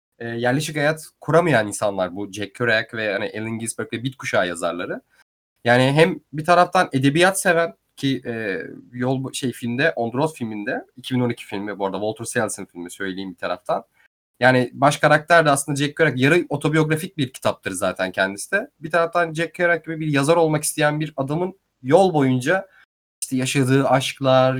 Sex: male